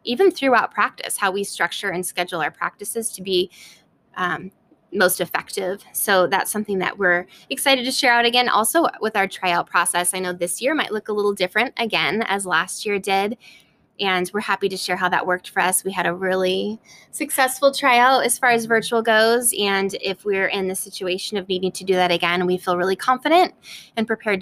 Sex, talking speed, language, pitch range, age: female, 205 wpm, English, 185-230 Hz, 20-39